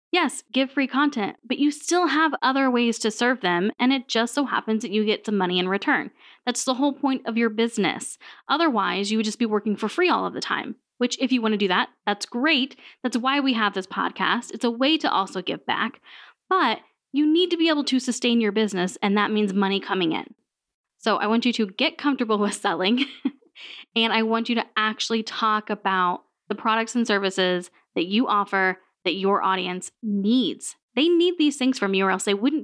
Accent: American